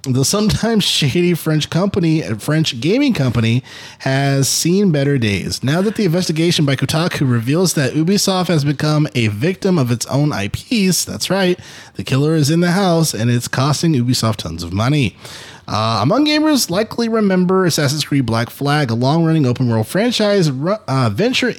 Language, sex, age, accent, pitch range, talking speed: English, male, 20-39, American, 125-195 Hz, 170 wpm